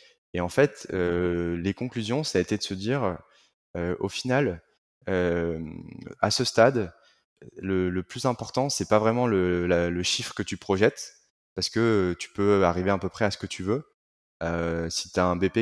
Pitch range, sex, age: 85-105 Hz, male, 20-39